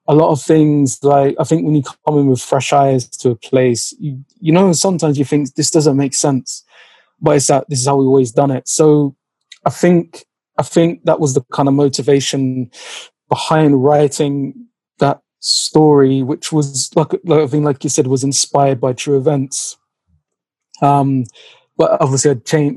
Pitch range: 135-150 Hz